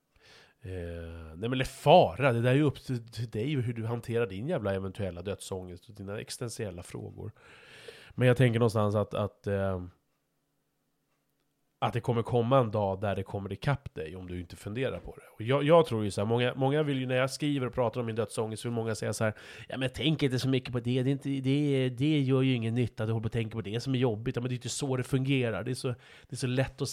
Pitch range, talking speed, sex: 100-130 Hz, 260 wpm, male